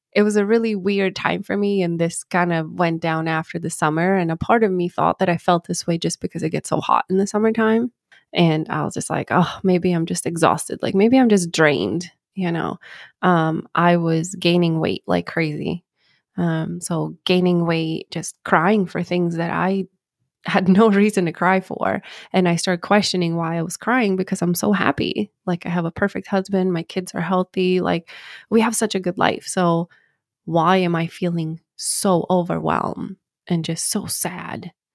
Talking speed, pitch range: 200 wpm, 165-195 Hz